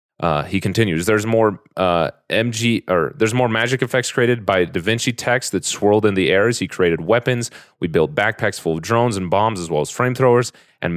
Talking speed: 220 wpm